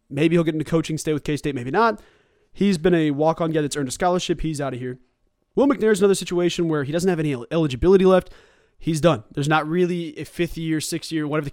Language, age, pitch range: English, 20-39, 150-190 Hz